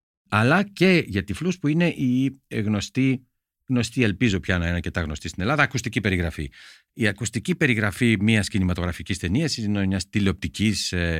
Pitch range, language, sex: 95-135 Hz, Greek, male